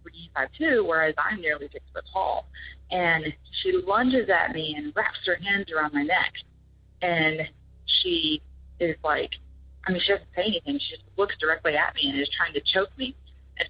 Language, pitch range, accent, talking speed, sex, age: English, 145-180 Hz, American, 180 wpm, female, 30-49